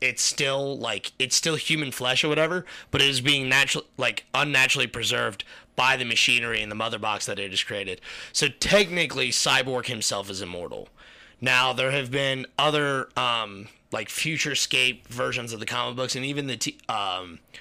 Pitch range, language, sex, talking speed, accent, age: 115-130 Hz, English, male, 175 wpm, American, 30-49